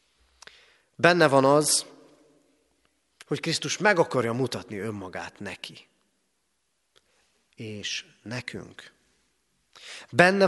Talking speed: 75 wpm